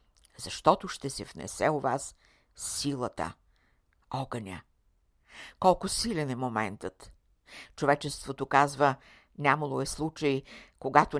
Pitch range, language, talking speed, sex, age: 125-160 Hz, Bulgarian, 95 wpm, female, 60-79